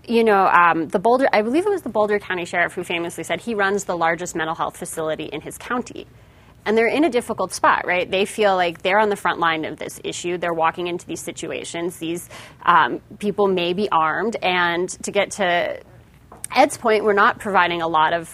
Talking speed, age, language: 220 wpm, 30-49, English